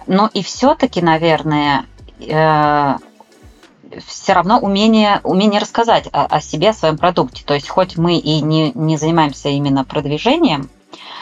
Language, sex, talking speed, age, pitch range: Russian, female, 140 wpm, 20-39, 145-175 Hz